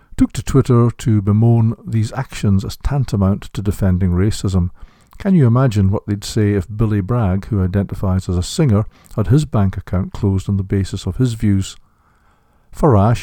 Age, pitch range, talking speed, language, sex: 60-79, 95-115 Hz, 170 wpm, English, male